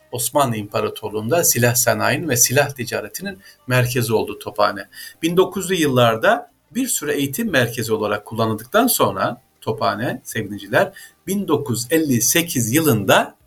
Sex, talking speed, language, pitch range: male, 100 wpm, Turkish, 110-145 Hz